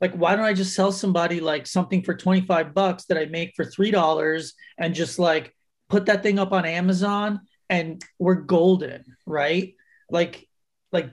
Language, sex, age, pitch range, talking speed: English, male, 30-49, 160-190 Hz, 175 wpm